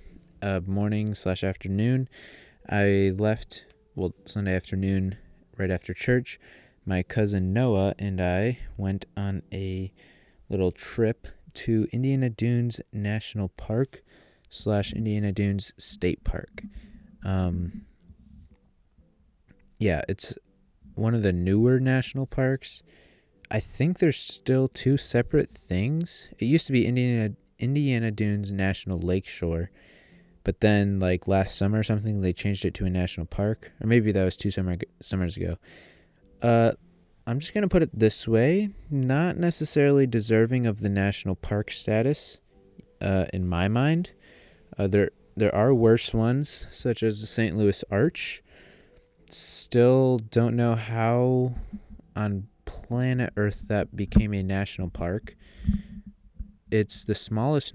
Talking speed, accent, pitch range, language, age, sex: 130 wpm, American, 95-120 Hz, English, 20-39, male